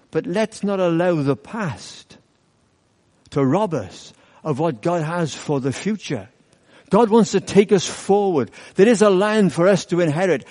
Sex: male